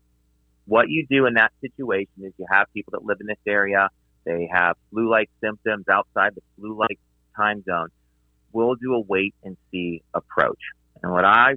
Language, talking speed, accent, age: English, 165 wpm, American, 30-49